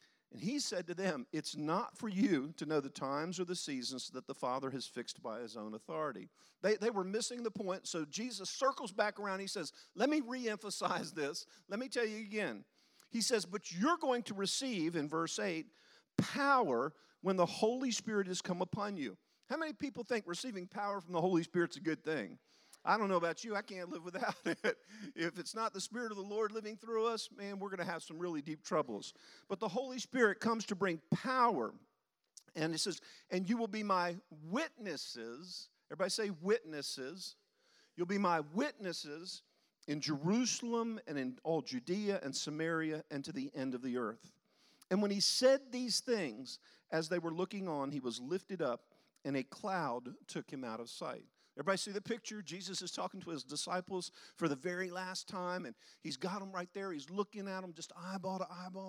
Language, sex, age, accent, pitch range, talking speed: English, male, 50-69, American, 165-225 Hz, 205 wpm